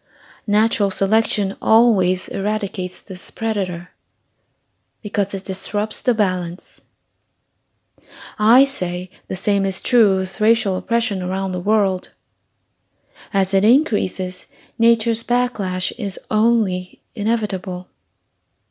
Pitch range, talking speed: 180-215 Hz, 100 wpm